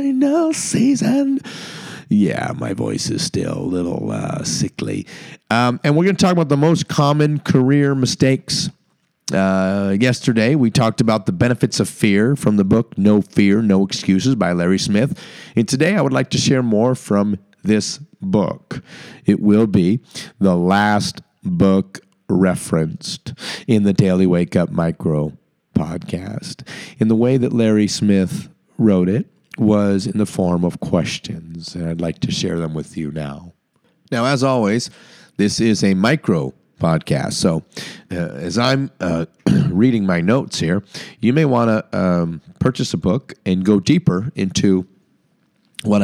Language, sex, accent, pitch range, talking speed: English, male, American, 90-130 Hz, 155 wpm